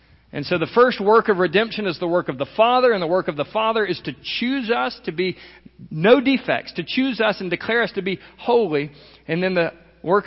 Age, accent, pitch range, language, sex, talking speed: 50-69, American, 135-185 Hz, English, male, 235 wpm